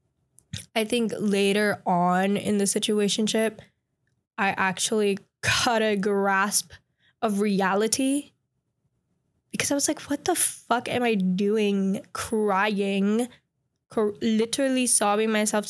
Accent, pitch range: American, 190-225 Hz